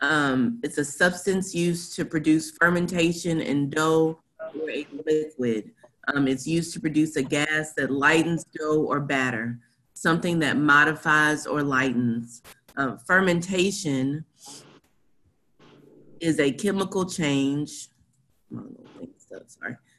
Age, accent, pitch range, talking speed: 30-49, American, 145-175 Hz, 110 wpm